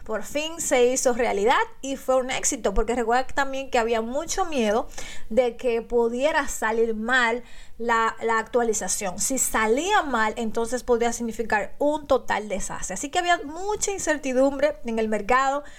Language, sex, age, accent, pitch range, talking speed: Spanish, female, 30-49, American, 225-270 Hz, 155 wpm